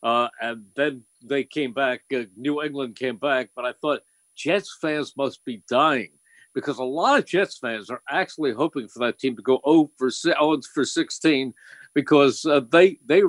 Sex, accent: male, American